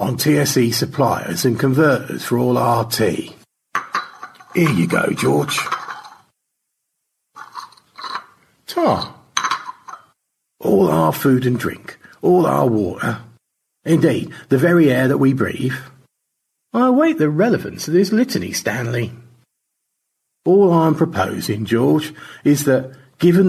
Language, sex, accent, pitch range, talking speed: English, male, British, 120-170 Hz, 110 wpm